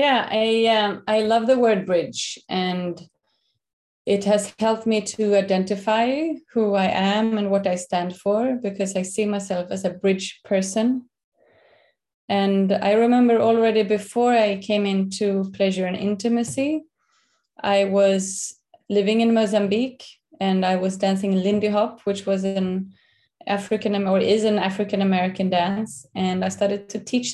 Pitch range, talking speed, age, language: 190-220 Hz, 145 wpm, 20-39, English